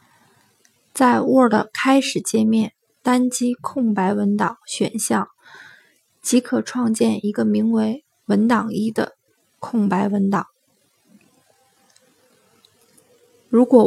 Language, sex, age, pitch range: Chinese, female, 20-39, 220-250 Hz